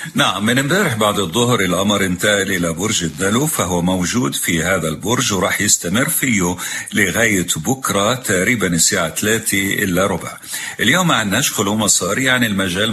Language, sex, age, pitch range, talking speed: Arabic, male, 50-69, 90-110 Hz, 150 wpm